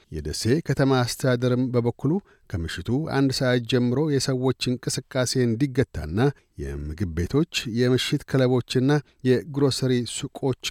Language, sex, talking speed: Amharic, male, 95 wpm